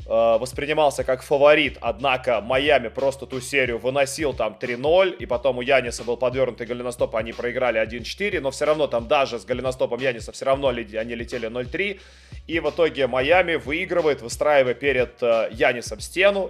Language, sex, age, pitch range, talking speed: Russian, male, 20-39, 125-150 Hz, 155 wpm